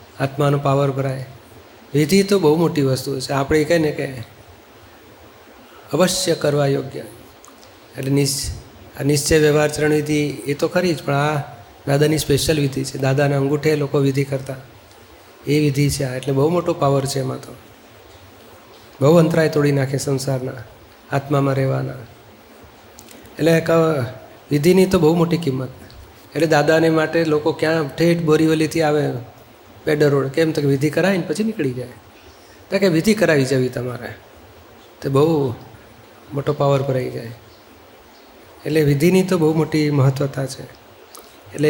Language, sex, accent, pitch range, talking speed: Gujarati, male, native, 130-155 Hz, 145 wpm